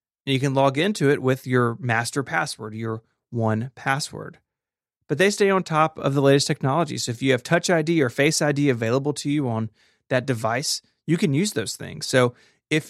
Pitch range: 125-155 Hz